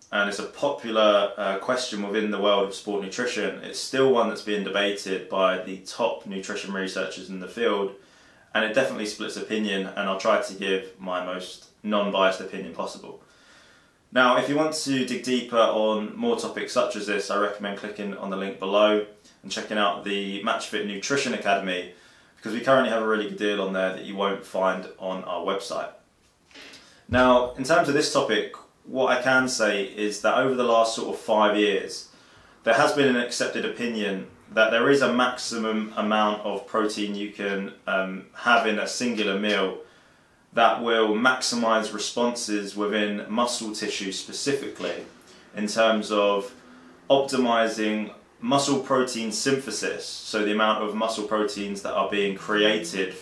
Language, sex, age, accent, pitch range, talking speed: English, male, 20-39, British, 100-115 Hz, 170 wpm